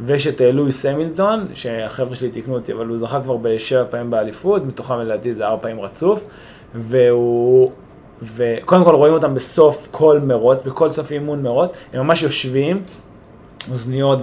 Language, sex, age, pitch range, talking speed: Hebrew, male, 20-39, 125-165 Hz, 155 wpm